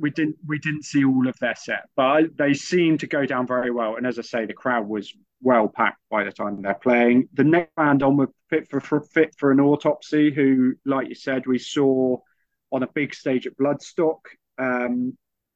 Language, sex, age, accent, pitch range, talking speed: English, male, 30-49, British, 115-140 Hz, 220 wpm